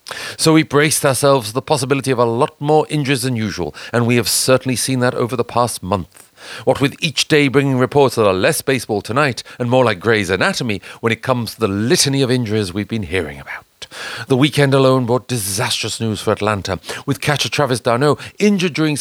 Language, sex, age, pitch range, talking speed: English, male, 40-59, 120-150 Hz, 210 wpm